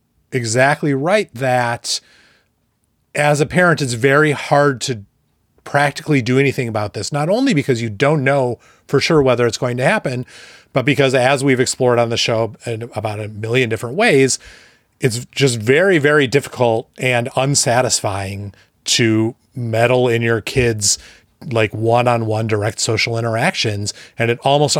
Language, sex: English, male